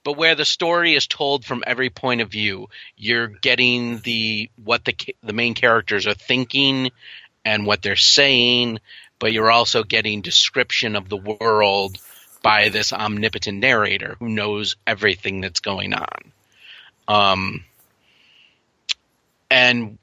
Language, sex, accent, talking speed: English, male, American, 140 wpm